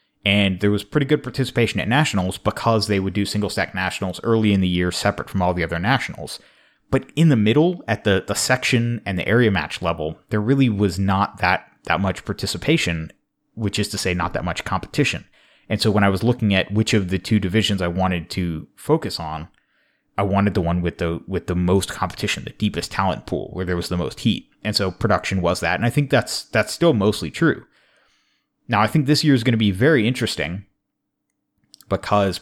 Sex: male